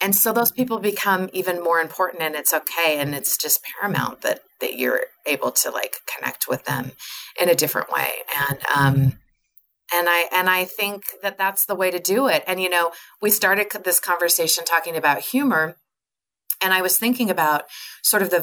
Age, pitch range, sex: 30-49, 150-195 Hz, female